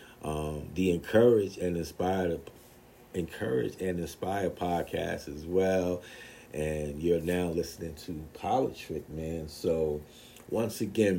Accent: American